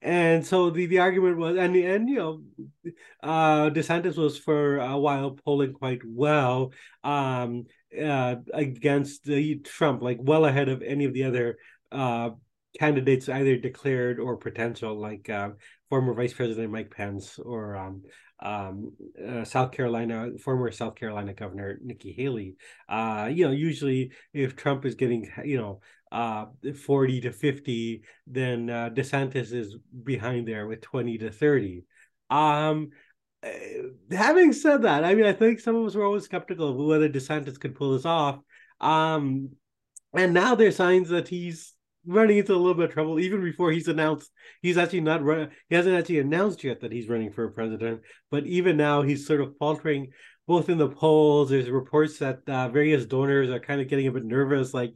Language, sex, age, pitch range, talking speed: English, male, 30-49, 125-155 Hz, 175 wpm